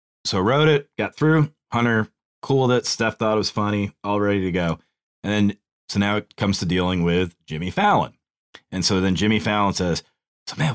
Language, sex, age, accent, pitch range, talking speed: English, male, 30-49, American, 90-120 Hz, 205 wpm